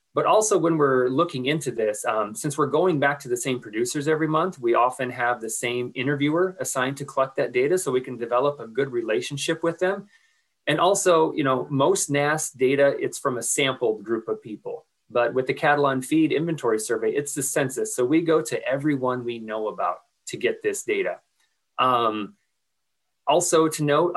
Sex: male